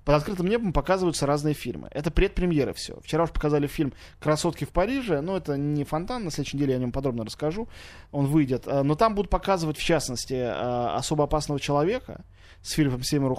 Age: 20-39